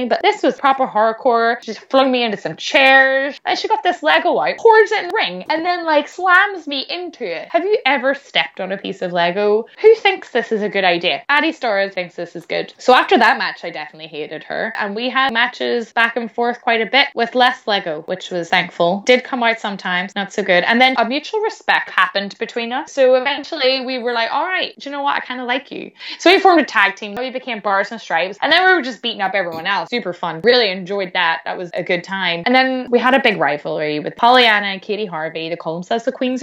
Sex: female